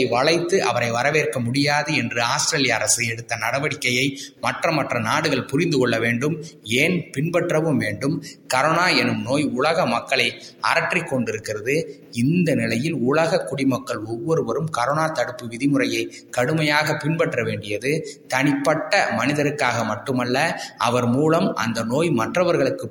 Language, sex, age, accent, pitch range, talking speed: Tamil, male, 20-39, native, 120-150 Hz, 115 wpm